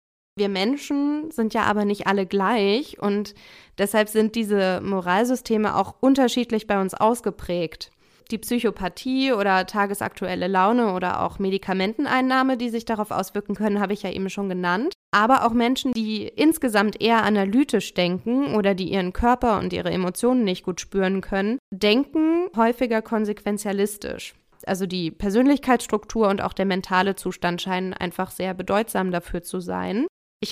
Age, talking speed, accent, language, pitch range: 20-39, 145 wpm, German, German, 190-235 Hz